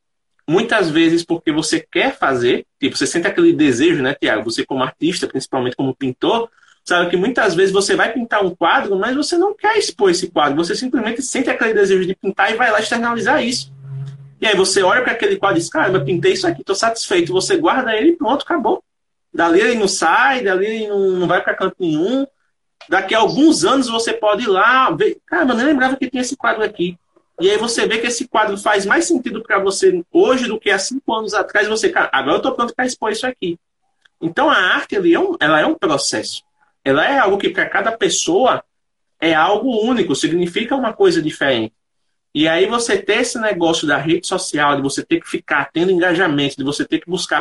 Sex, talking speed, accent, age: male, 220 wpm, Brazilian, 20-39